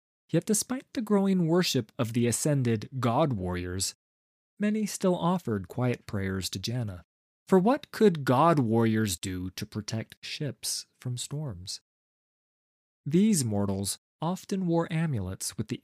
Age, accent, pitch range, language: 30-49, American, 105-170 Hz, English